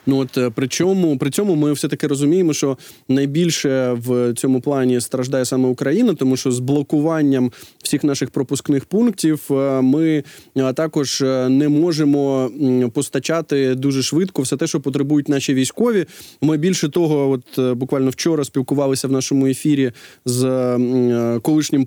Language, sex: Ukrainian, male